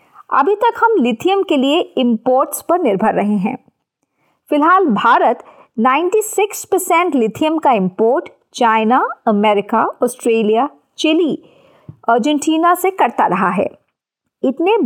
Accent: native